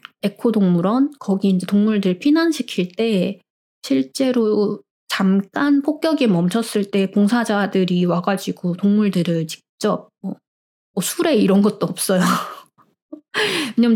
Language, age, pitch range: Korean, 20-39, 190-255 Hz